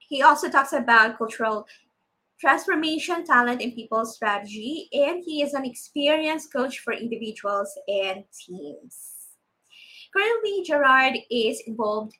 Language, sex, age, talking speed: English, female, 20-39, 120 wpm